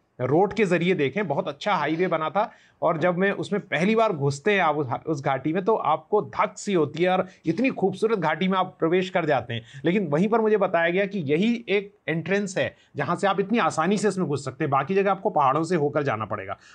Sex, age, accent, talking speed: male, 30-49, native, 235 wpm